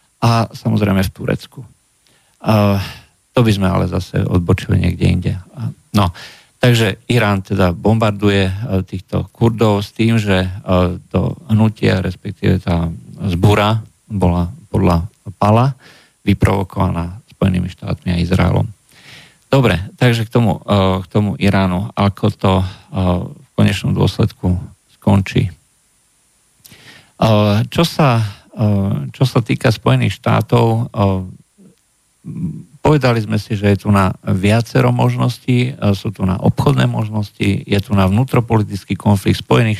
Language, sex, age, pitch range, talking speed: Slovak, male, 50-69, 95-115 Hz, 115 wpm